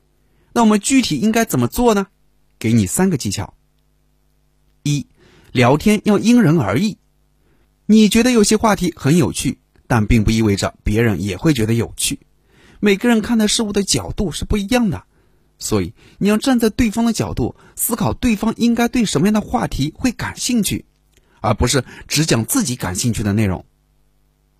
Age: 30-49